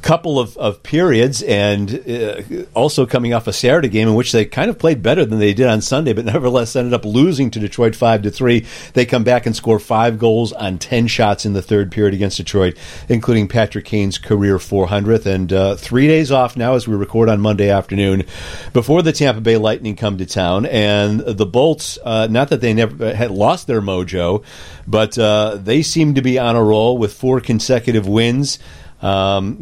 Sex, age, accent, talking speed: male, 50-69, American, 200 wpm